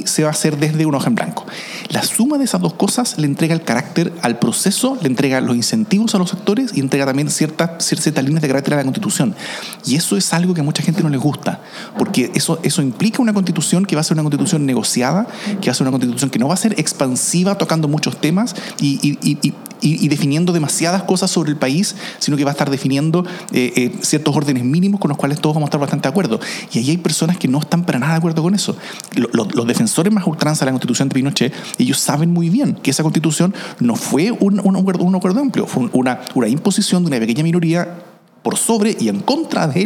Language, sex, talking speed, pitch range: Spanish, male, 250 wpm, 150-205 Hz